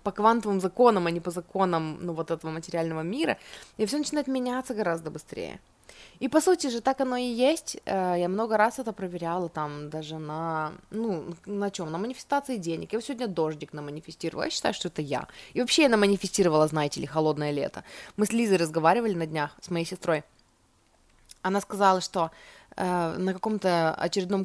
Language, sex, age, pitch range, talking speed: Russian, female, 20-39, 165-210 Hz, 175 wpm